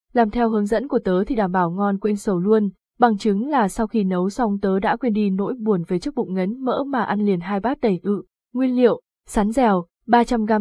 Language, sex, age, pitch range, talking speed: Vietnamese, female, 20-39, 190-230 Hz, 245 wpm